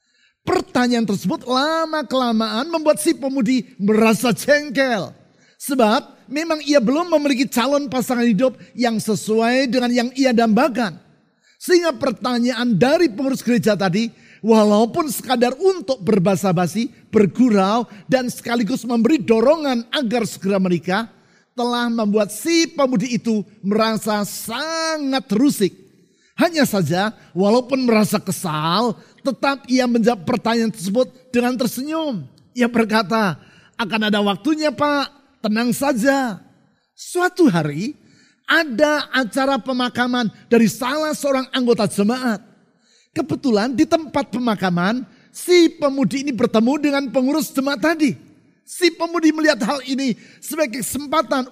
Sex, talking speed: male, 115 wpm